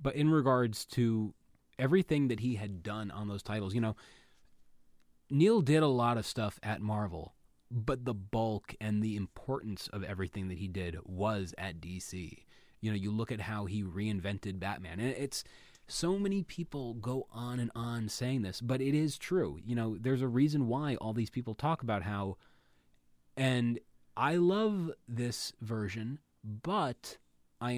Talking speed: 170 wpm